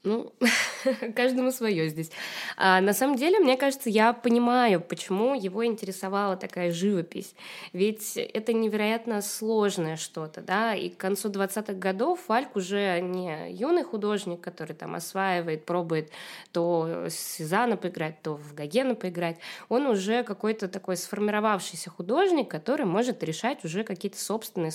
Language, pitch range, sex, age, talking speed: Russian, 180-235 Hz, female, 20-39, 135 wpm